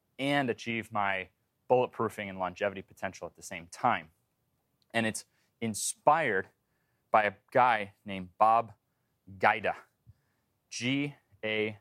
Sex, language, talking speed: male, English, 110 wpm